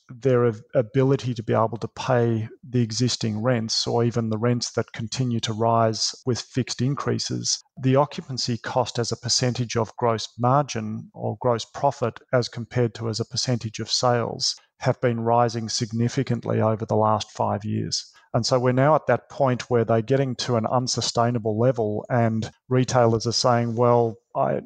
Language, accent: English, Australian